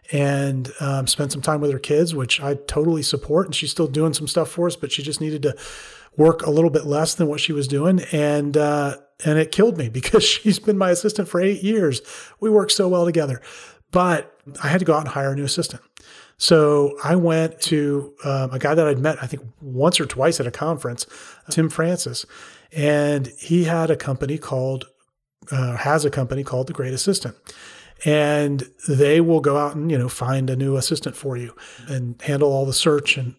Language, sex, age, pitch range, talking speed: English, male, 30-49, 140-165 Hz, 215 wpm